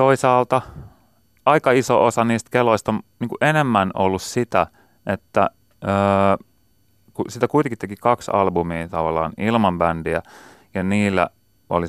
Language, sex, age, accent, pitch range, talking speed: Finnish, male, 30-49, native, 80-110 Hz, 120 wpm